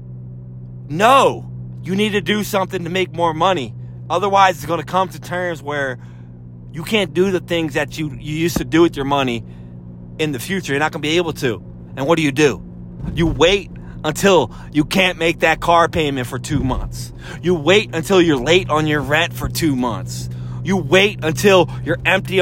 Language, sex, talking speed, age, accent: English, male, 200 wpm, 30-49, American